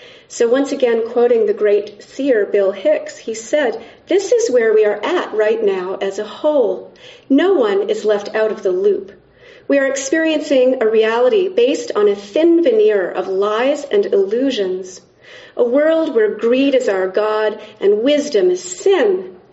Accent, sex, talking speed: American, female, 170 wpm